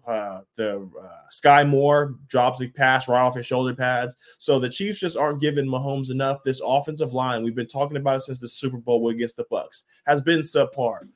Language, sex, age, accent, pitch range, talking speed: English, male, 20-39, American, 125-145 Hz, 210 wpm